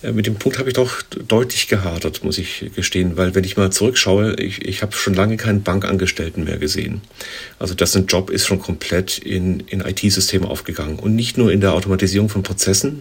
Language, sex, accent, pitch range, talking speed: German, male, German, 95-105 Hz, 200 wpm